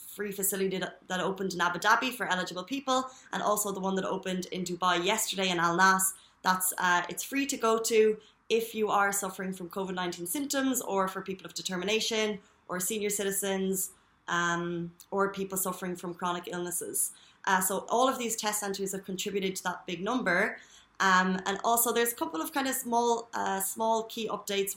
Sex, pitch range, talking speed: female, 180-215 Hz, 185 wpm